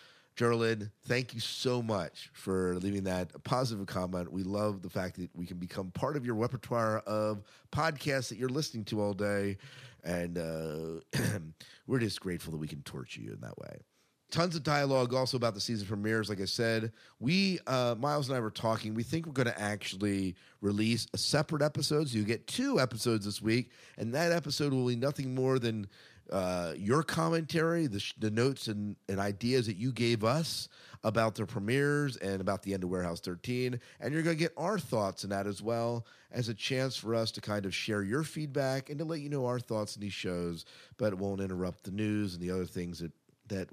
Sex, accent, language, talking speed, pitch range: male, American, English, 215 wpm, 100-130 Hz